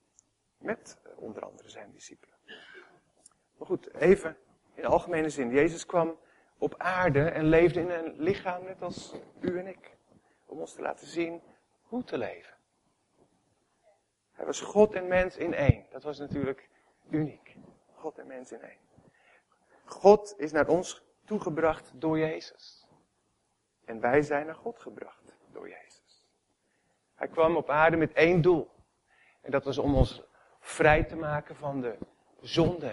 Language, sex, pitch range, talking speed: Dutch, male, 135-170 Hz, 150 wpm